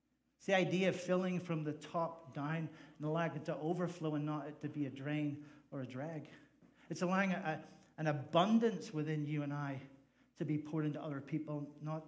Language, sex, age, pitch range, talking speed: English, male, 50-69, 140-170 Hz, 195 wpm